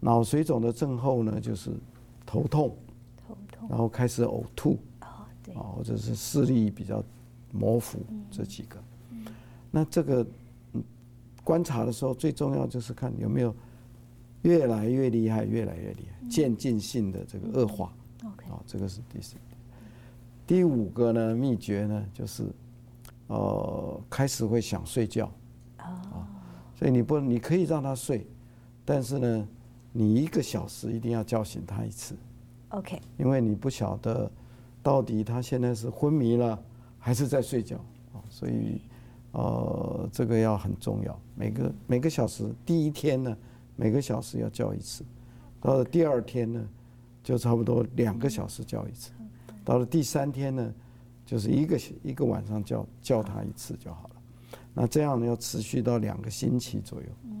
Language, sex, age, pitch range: English, male, 50-69, 110-125 Hz